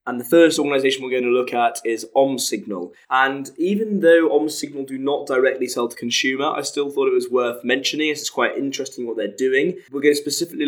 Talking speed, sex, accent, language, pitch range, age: 225 wpm, male, British, English, 115-155 Hz, 10-29